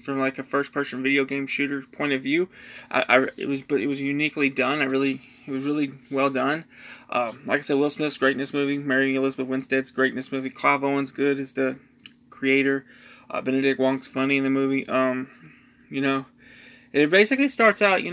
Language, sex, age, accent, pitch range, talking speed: English, male, 20-39, American, 130-150 Hz, 200 wpm